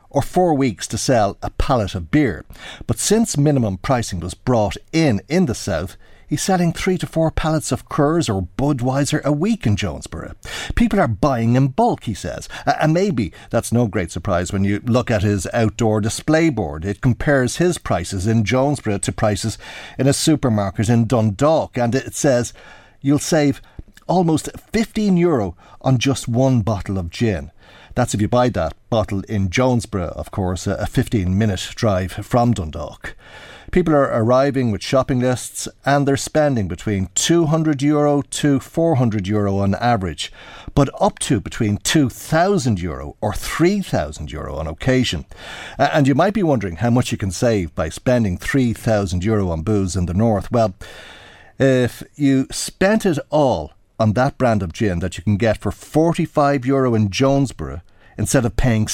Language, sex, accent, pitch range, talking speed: English, male, Irish, 100-140 Hz, 165 wpm